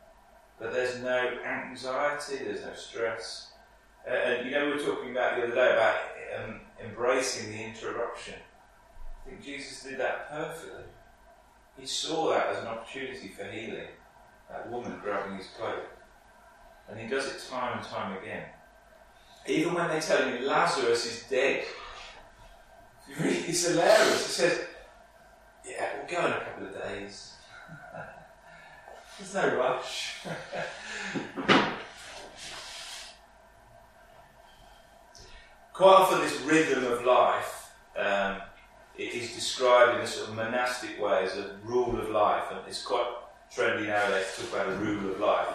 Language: English